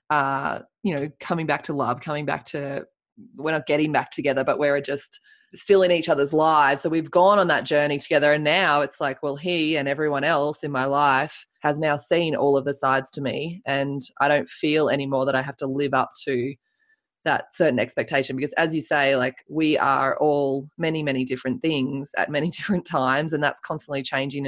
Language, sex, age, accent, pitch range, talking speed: English, female, 20-39, Australian, 140-160 Hz, 210 wpm